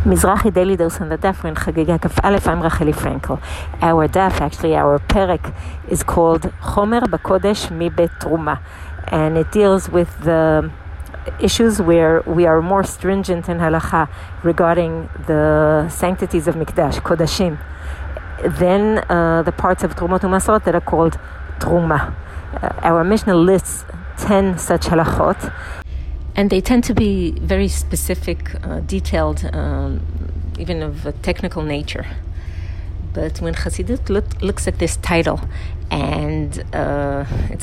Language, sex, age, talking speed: English, female, 50-69, 130 wpm